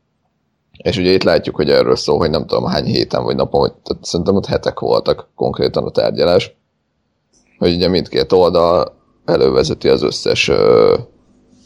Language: Hungarian